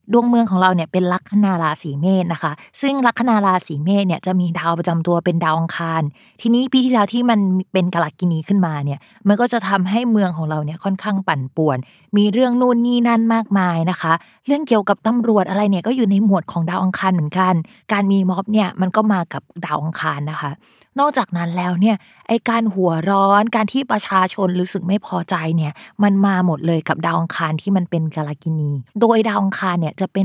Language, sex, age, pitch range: Thai, female, 20-39, 170-220 Hz